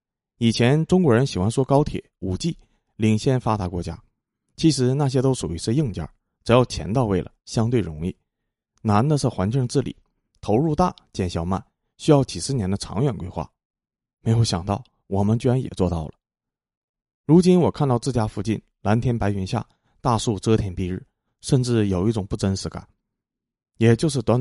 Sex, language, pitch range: male, Chinese, 95-125 Hz